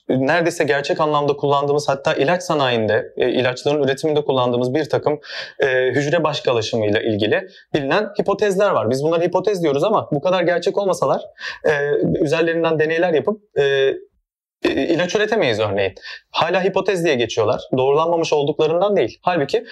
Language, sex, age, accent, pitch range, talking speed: Turkish, male, 30-49, native, 140-195 Hz, 125 wpm